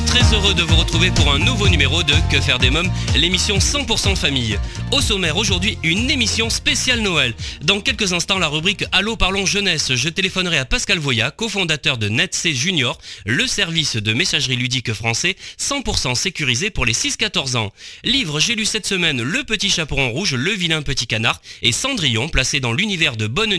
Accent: French